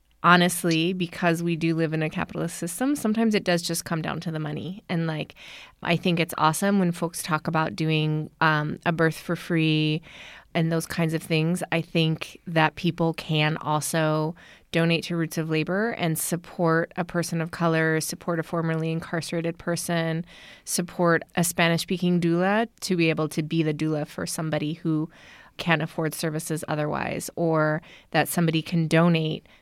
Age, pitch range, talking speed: 20-39, 155-175 Hz, 170 wpm